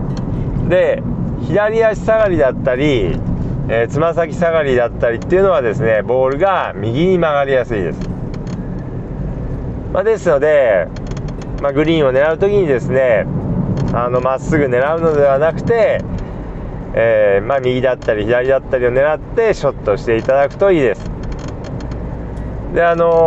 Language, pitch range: Japanese, 135-185 Hz